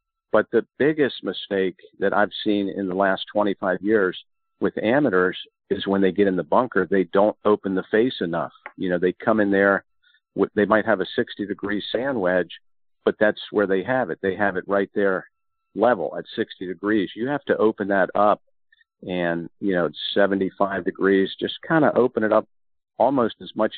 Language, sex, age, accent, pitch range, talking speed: English, male, 50-69, American, 95-125 Hz, 195 wpm